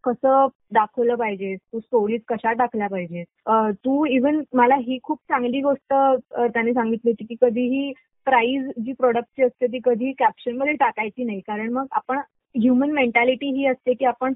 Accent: native